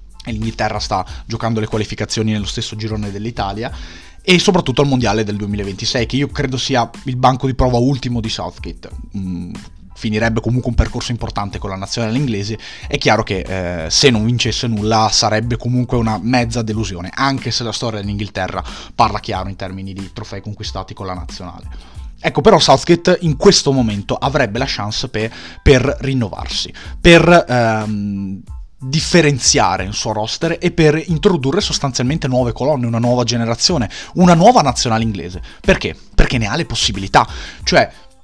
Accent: native